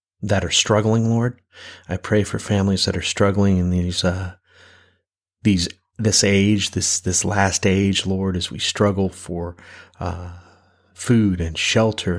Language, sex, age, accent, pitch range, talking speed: English, male, 30-49, American, 90-100 Hz, 150 wpm